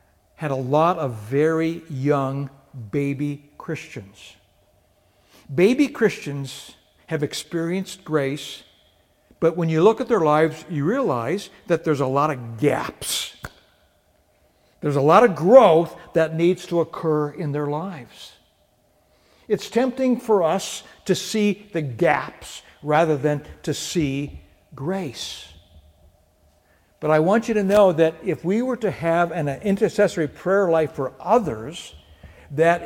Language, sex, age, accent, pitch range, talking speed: English, male, 60-79, American, 130-175 Hz, 130 wpm